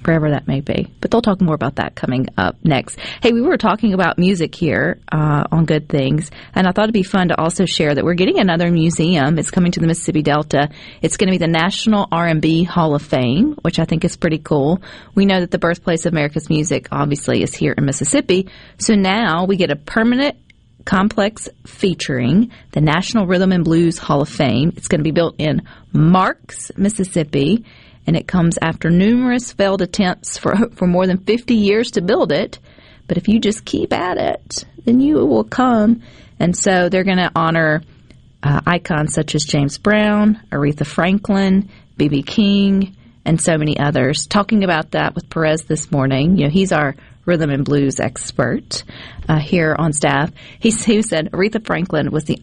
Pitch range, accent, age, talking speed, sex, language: 155-195 Hz, American, 40-59, 195 wpm, female, English